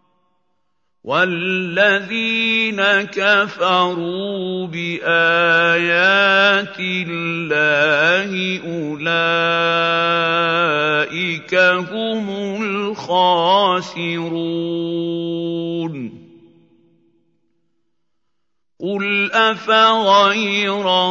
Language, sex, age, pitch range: Arabic, male, 50-69, 165-200 Hz